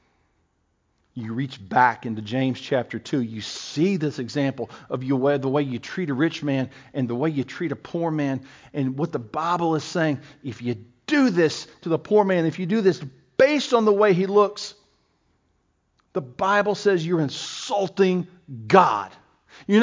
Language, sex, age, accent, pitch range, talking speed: English, male, 50-69, American, 145-215 Hz, 175 wpm